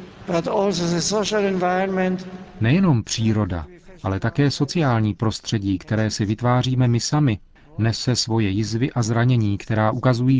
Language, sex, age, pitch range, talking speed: Czech, male, 40-59, 110-135 Hz, 105 wpm